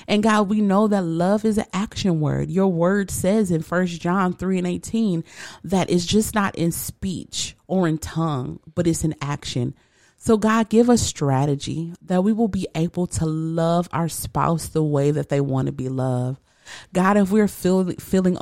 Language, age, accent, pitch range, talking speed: English, 30-49, American, 145-180 Hz, 190 wpm